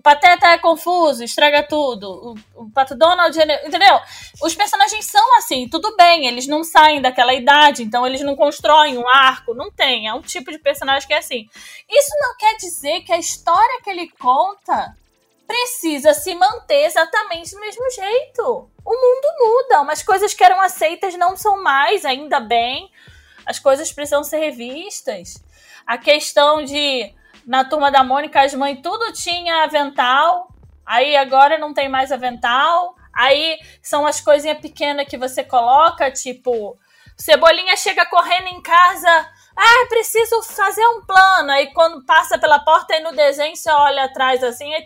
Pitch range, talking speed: 280-370 Hz, 165 wpm